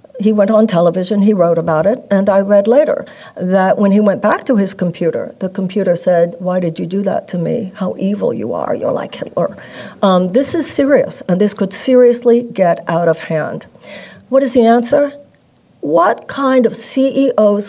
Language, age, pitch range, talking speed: English, 60-79, 180-215 Hz, 195 wpm